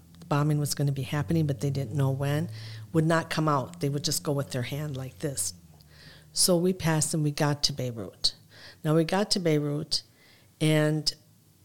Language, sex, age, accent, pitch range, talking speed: English, female, 50-69, American, 135-160 Hz, 195 wpm